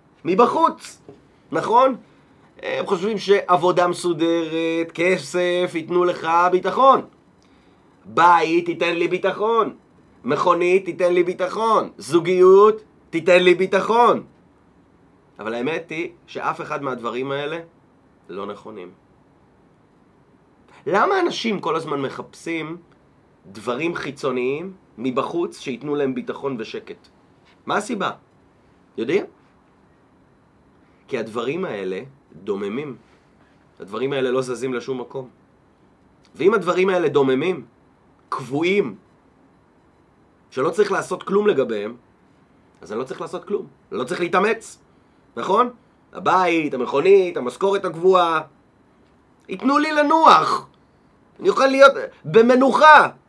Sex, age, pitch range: male, 30-49, 165-240 Hz